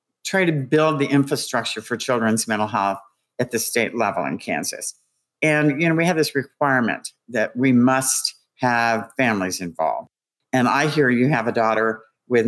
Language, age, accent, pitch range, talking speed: English, 50-69, American, 115-140 Hz, 175 wpm